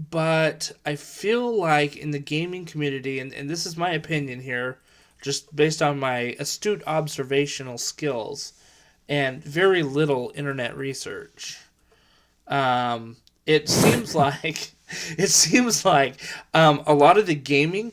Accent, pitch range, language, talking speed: American, 125-155 Hz, English, 135 wpm